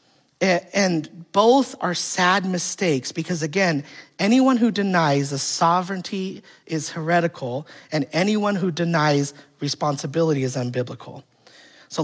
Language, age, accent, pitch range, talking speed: English, 30-49, American, 145-195 Hz, 110 wpm